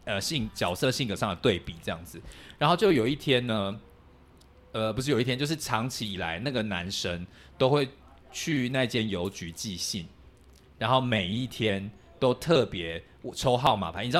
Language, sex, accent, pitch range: Chinese, male, native, 95-130 Hz